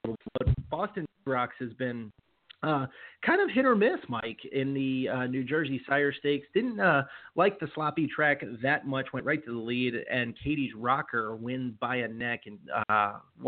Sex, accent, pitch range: male, American, 125-150 Hz